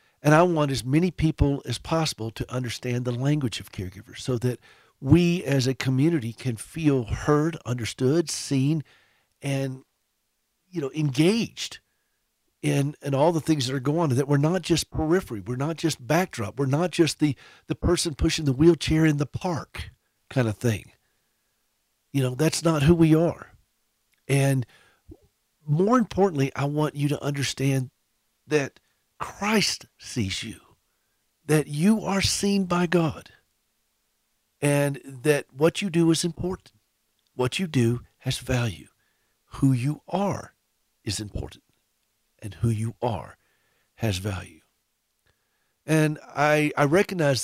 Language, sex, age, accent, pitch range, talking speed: English, male, 50-69, American, 120-160 Hz, 145 wpm